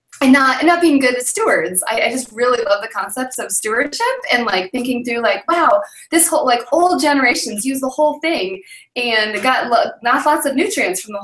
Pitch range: 210-290 Hz